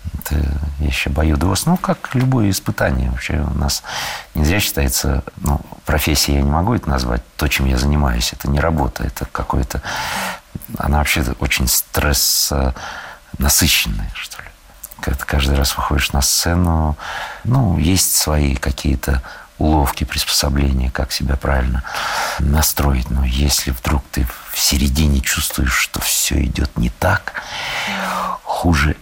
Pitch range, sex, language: 70-90 Hz, male, Russian